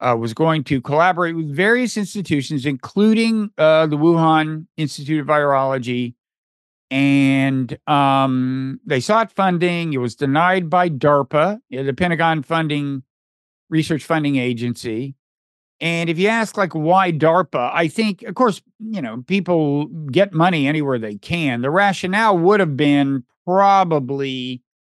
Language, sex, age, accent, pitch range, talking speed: English, male, 50-69, American, 140-185 Hz, 135 wpm